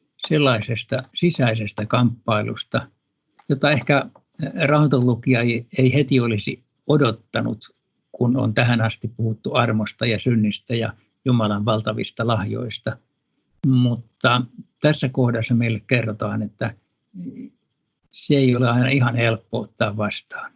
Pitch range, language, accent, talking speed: 110-130 Hz, Finnish, native, 105 wpm